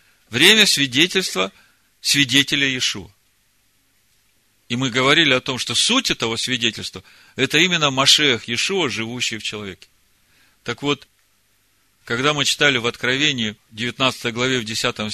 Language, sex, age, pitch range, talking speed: Russian, male, 40-59, 105-140 Hz, 125 wpm